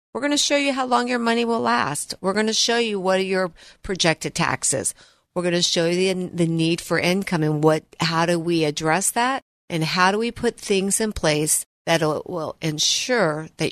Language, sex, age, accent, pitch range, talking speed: English, female, 50-69, American, 170-245 Hz, 220 wpm